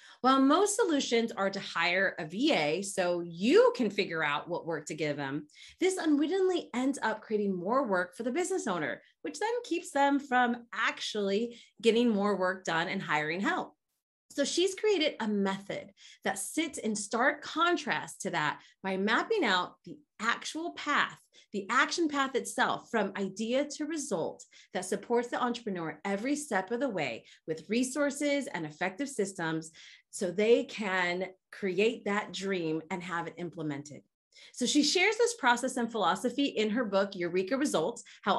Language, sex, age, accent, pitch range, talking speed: English, female, 30-49, American, 195-275 Hz, 165 wpm